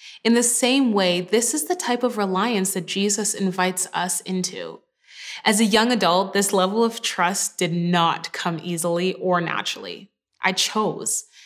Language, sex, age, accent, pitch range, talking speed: English, female, 20-39, American, 185-225 Hz, 160 wpm